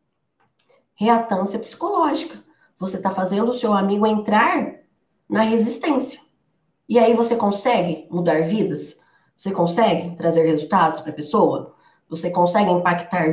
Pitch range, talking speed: 180-235 Hz, 125 wpm